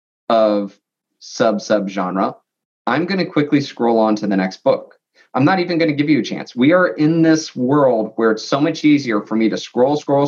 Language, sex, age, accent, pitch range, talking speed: English, male, 20-39, American, 110-150 Hz, 220 wpm